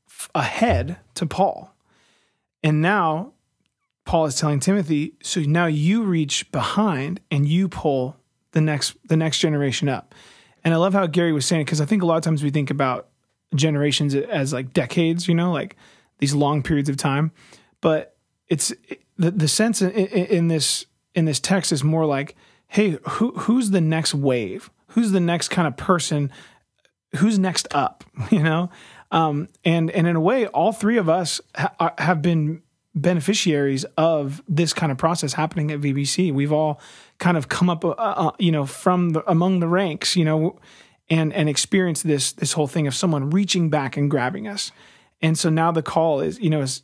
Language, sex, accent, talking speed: English, male, American, 190 wpm